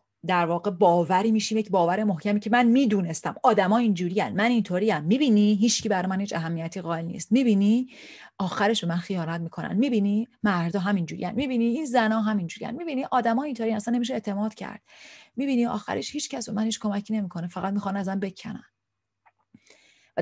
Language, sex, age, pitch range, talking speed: Persian, female, 30-49, 180-230 Hz, 180 wpm